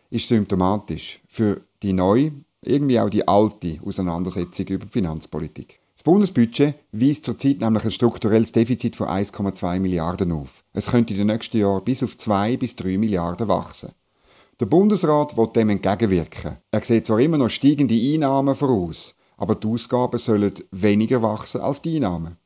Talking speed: 160 wpm